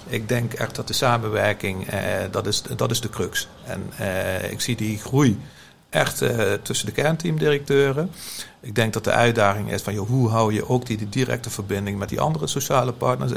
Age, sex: 50-69, male